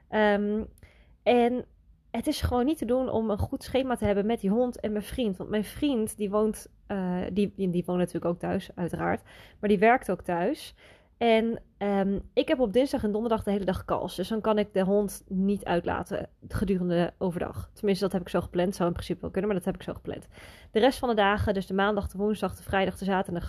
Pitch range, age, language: 185-215 Hz, 20-39, Dutch